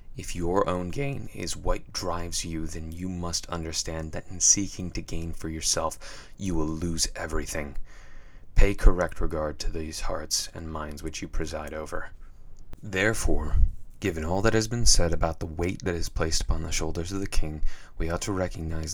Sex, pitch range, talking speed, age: male, 80-95 Hz, 185 wpm, 30-49